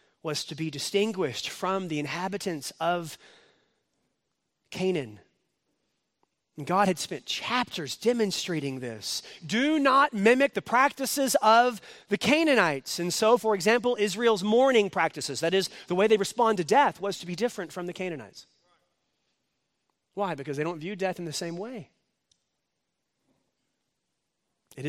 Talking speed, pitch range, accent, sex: 135 wpm, 160-220 Hz, American, male